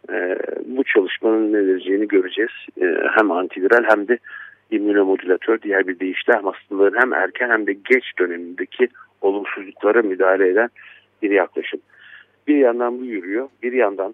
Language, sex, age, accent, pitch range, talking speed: Turkish, male, 50-69, native, 270-415 Hz, 140 wpm